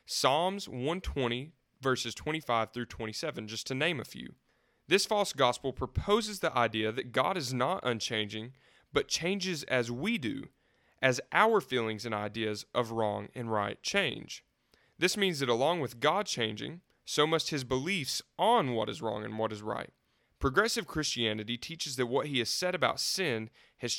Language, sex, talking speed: English, male, 170 wpm